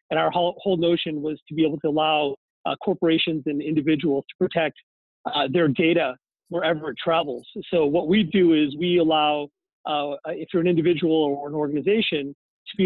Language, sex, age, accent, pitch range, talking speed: English, male, 40-59, American, 150-185 Hz, 180 wpm